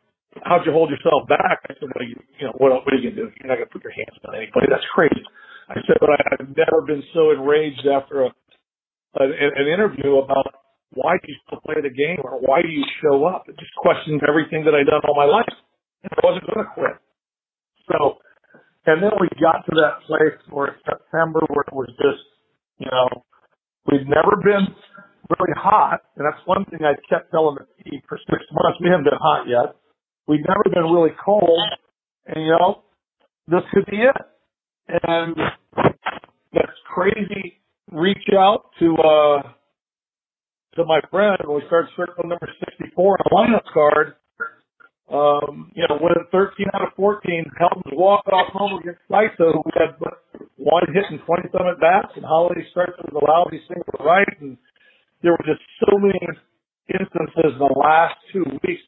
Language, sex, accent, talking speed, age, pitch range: English, male, American, 190 wpm, 50-69, 150-190 Hz